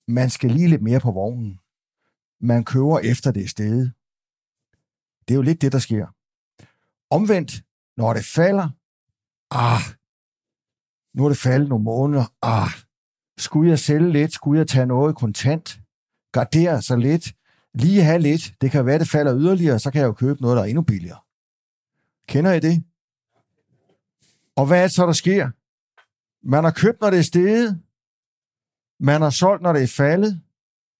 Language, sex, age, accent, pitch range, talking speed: Danish, male, 60-79, native, 120-160 Hz, 170 wpm